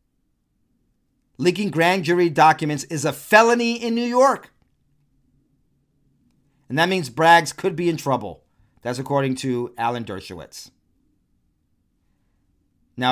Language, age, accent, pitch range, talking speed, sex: English, 40-59, American, 115-145 Hz, 110 wpm, male